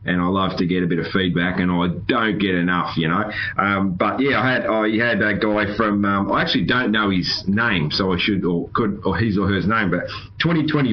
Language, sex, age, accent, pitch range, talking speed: English, male, 30-49, Australian, 90-110 Hz, 245 wpm